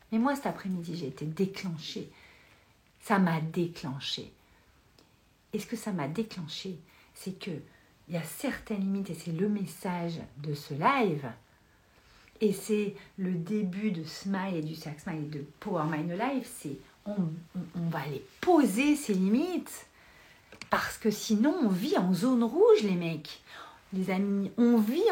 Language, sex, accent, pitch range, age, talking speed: French, female, French, 165-240 Hz, 50-69, 160 wpm